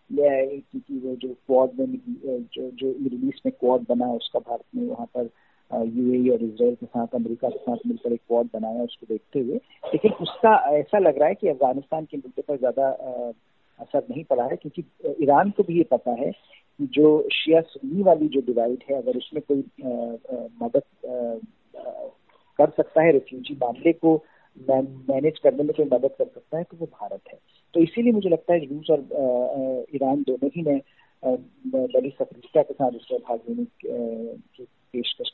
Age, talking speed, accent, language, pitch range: 40-59, 160 wpm, native, Hindi, 125-175 Hz